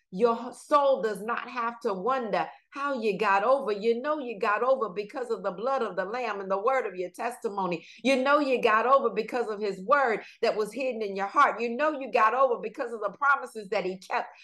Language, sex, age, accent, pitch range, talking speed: English, female, 50-69, American, 215-275 Hz, 235 wpm